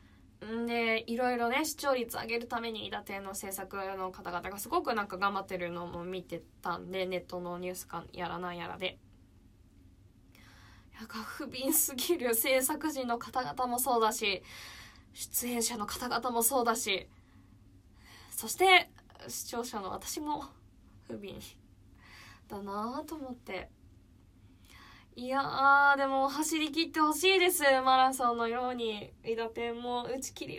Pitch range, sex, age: 185-275 Hz, female, 20-39